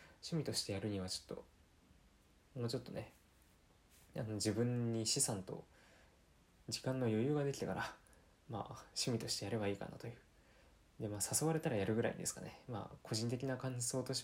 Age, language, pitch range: 20-39, Japanese, 100-130 Hz